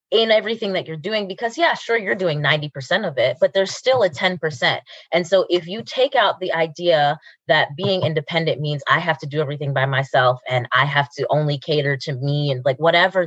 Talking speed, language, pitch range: 225 wpm, English, 160-230 Hz